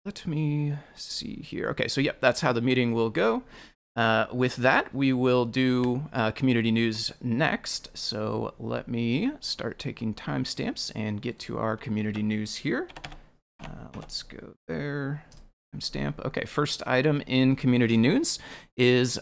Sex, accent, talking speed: male, American, 150 wpm